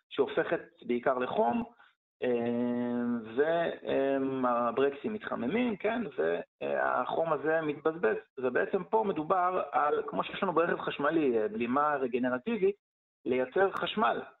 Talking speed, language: 90 wpm, Hebrew